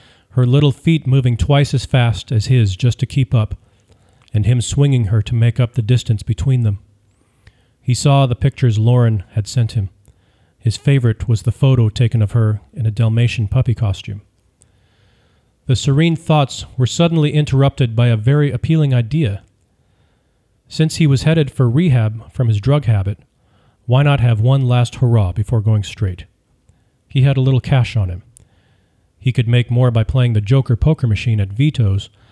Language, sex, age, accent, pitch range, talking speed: English, male, 40-59, American, 105-130 Hz, 175 wpm